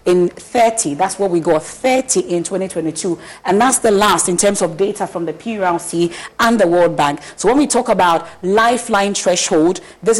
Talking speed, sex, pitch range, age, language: 190 wpm, female, 175-220 Hz, 40-59, English